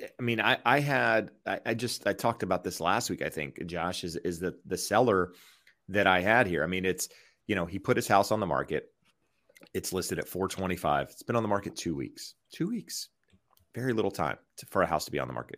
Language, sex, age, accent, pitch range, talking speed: English, male, 30-49, American, 90-105 Hz, 245 wpm